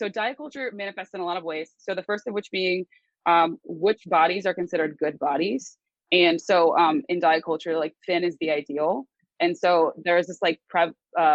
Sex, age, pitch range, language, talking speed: female, 20-39, 160-210 Hz, English, 215 wpm